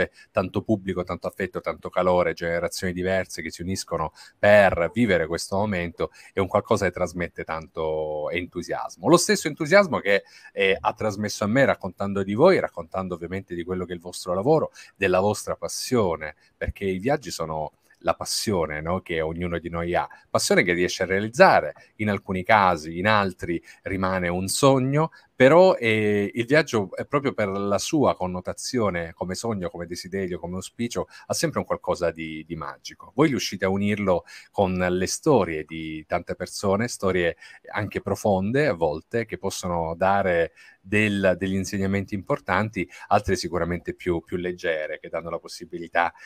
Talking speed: 160 wpm